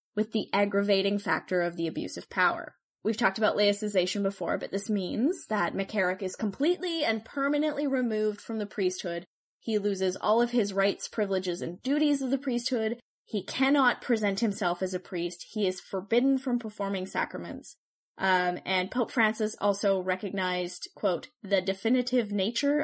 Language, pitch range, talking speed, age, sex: English, 190-235 Hz, 165 wpm, 10-29, female